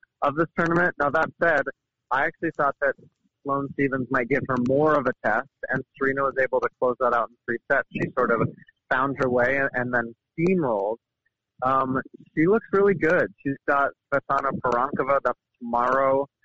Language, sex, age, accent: English, male, 30-49, American